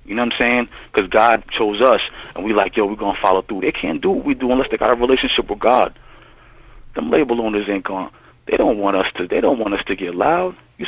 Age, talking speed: 40-59, 270 wpm